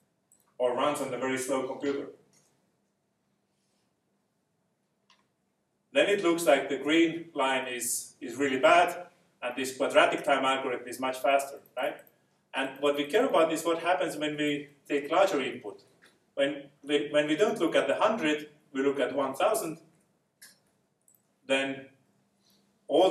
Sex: male